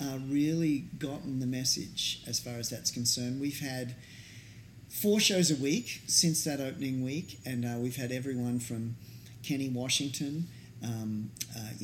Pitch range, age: 115-135 Hz, 40-59